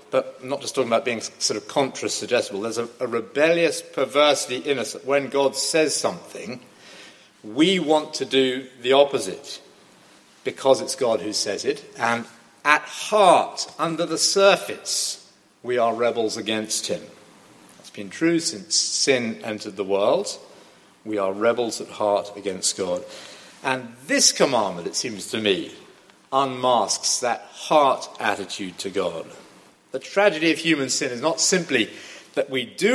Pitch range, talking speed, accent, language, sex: 115-155 Hz, 150 wpm, British, English, male